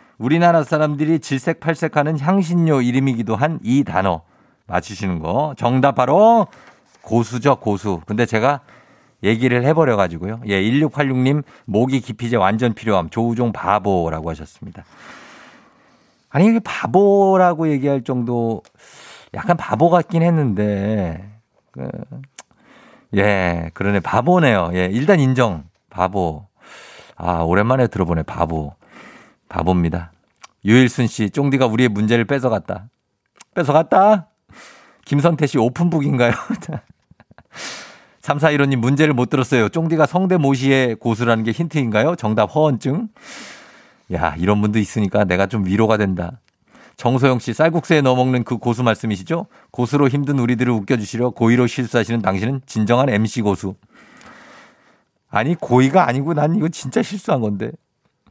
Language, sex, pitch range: Korean, male, 105-150 Hz